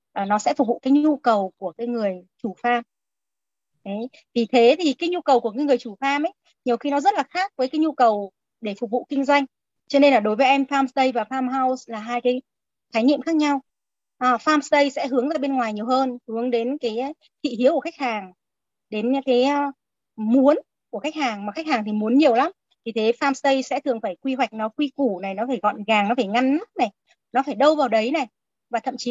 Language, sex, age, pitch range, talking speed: Vietnamese, female, 20-39, 225-280 Hz, 240 wpm